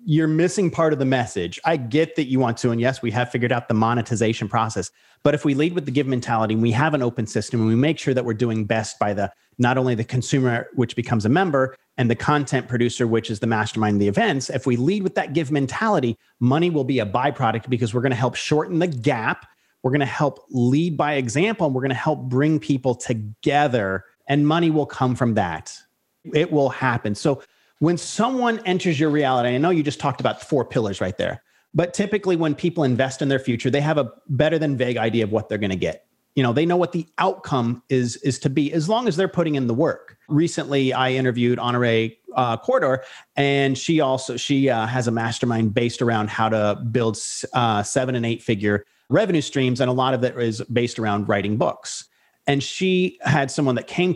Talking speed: 230 wpm